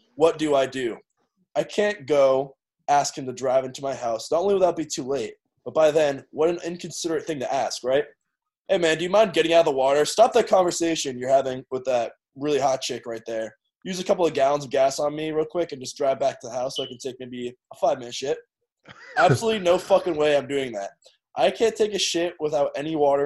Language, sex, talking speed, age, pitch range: English, male, 245 wpm, 20-39, 135-175 Hz